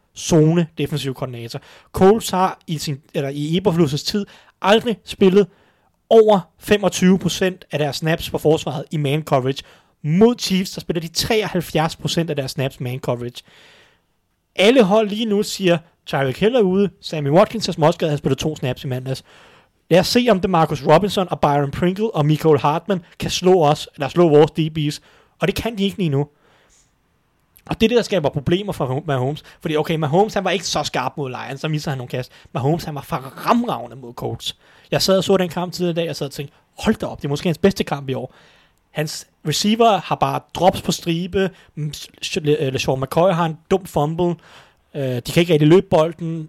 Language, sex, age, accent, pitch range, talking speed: Danish, male, 30-49, native, 145-185 Hz, 200 wpm